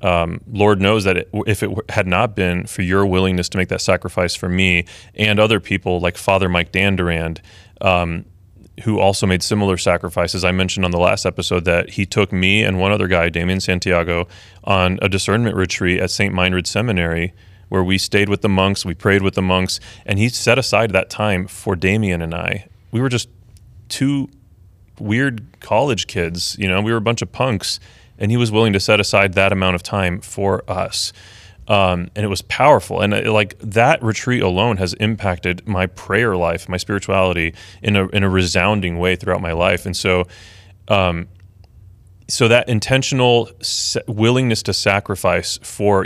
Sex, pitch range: male, 90-105 Hz